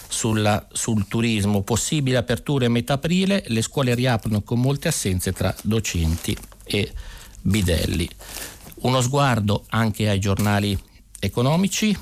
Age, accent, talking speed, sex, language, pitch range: 50-69, native, 120 wpm, male, Italian, 100-125 Hz